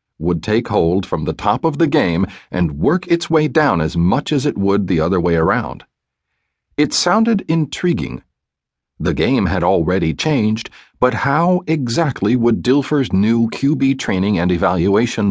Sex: male